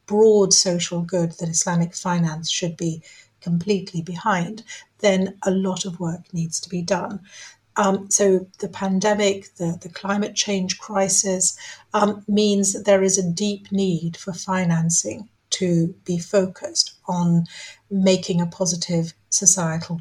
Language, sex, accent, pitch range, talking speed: English, female, British, 170-195 Hz, 140 wpm